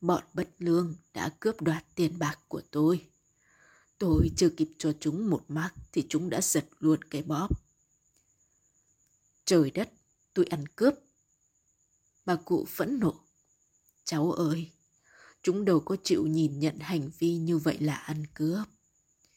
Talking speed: 150 wpm